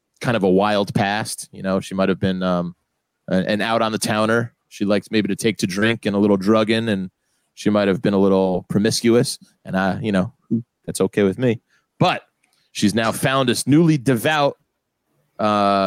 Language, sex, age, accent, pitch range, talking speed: English, male, 30-49, American, 95-115 Hz, 195 wpm